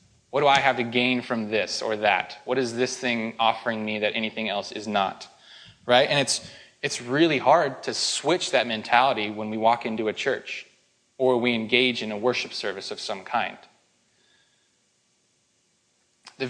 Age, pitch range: 20-39, 115-130 Hz